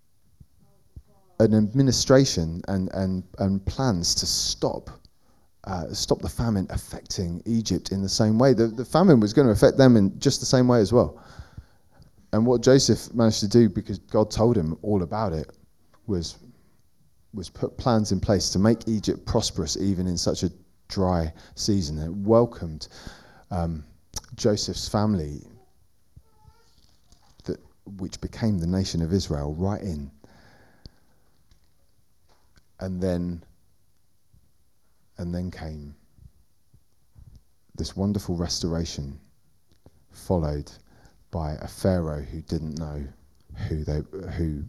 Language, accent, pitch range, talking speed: English, British, 85-110 Hz, 130 wpm